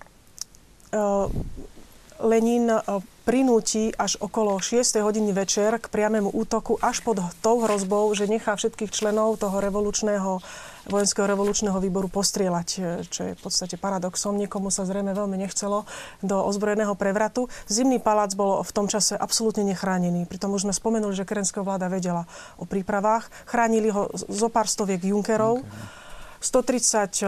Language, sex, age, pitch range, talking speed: Slovak, female, 30-49, 195-225 Hz, 135 wpm